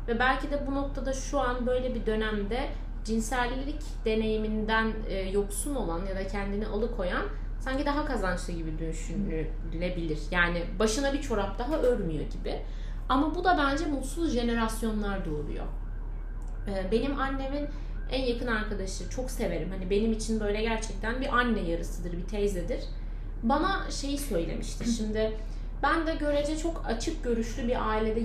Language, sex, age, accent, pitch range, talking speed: Turkish, female, 30-49, native, 200-265 Hz, 140 wpm